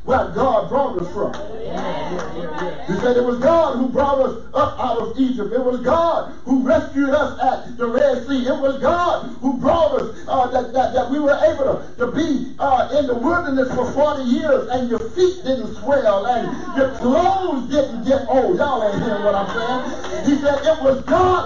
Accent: American